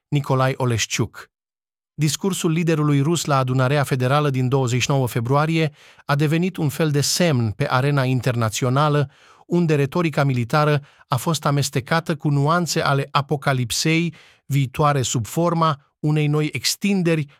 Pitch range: 125-160 Hz